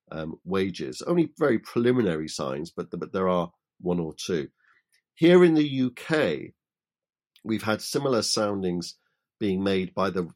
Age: 50-69